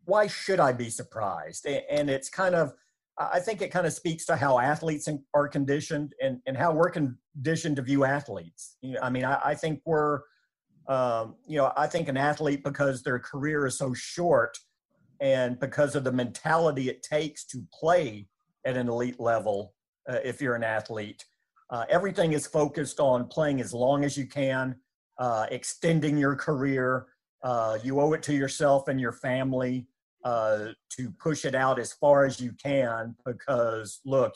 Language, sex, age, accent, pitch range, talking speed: English, male, 50-69, American, 125-150 Hz, 175 wpm